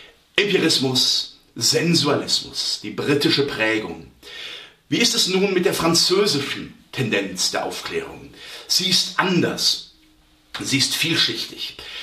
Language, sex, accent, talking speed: German, male, German, 105 wpm